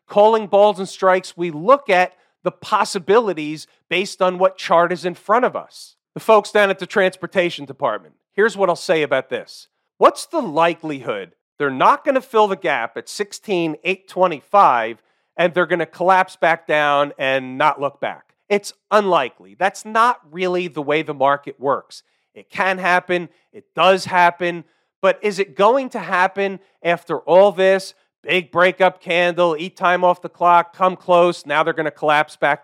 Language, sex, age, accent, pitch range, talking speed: English, male, 40-59, American, 170-205 Hz, 175 wpm